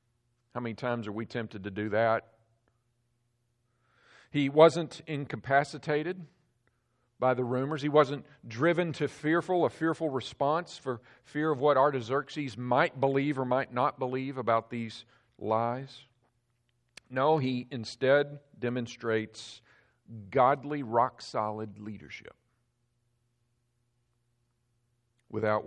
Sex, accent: male, American